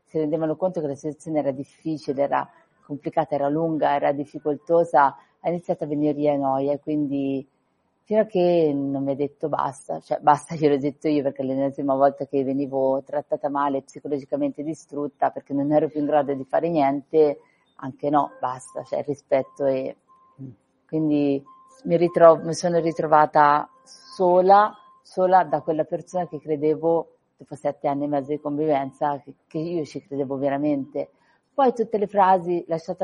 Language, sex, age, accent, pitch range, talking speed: Italian, female, 40-59, native, 145-170 Hz, 165 wpm